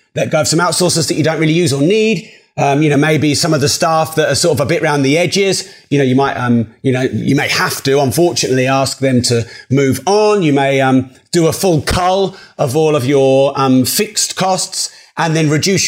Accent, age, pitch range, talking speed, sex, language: British, 30-49, 140-185 Hz, 235 wpm, male, English